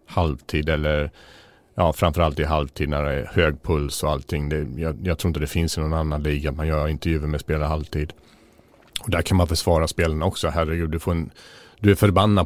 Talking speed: 215 wpm